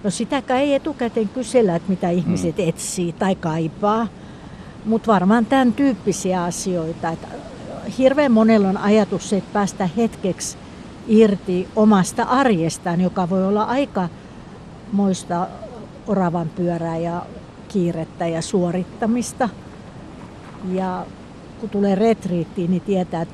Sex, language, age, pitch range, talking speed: female, Finnish, 60-79, 175-225 Hz, 115 wpm